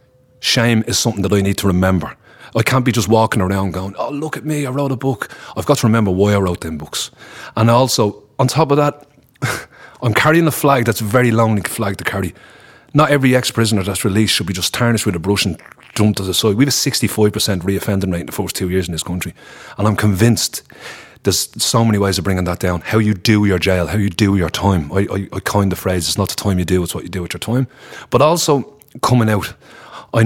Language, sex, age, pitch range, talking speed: English, male, 30-49, 95-115 Hz, 250 wpm